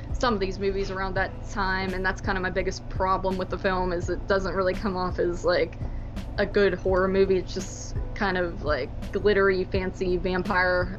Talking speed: 200 wpm